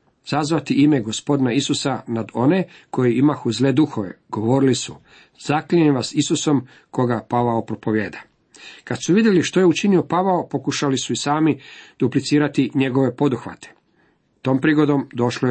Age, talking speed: 50-69, 135 wpm